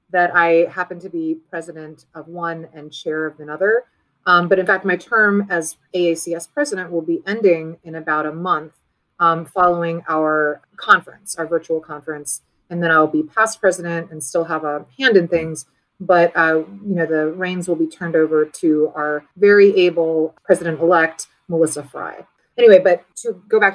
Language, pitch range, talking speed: English, 160-195 Hz, 180 wpm